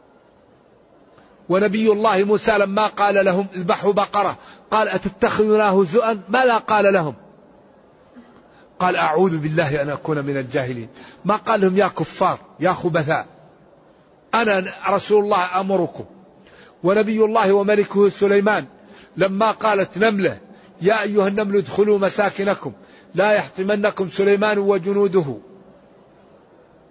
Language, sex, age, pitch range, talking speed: Arabic, male, 50-69, 170-205 Hz, 105 wpm